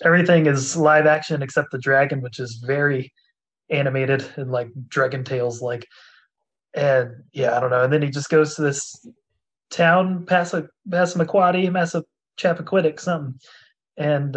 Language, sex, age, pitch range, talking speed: English, male, 20-39, 125-160 Hz, 150 wpm